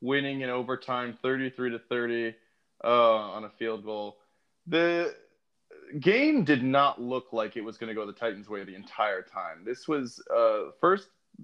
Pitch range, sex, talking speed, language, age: 120-175 Hz, male, 175 wpm, English, 20-39